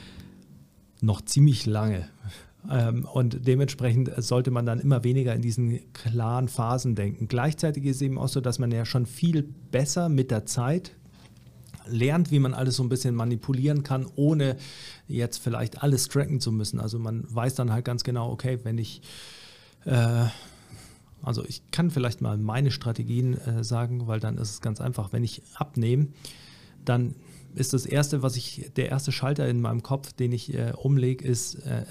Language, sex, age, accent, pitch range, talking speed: German, male, 40-59, German, 115-140 Hz, 170 wpm